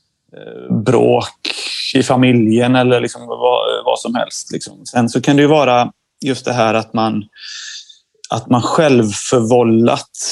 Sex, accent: male, Swedish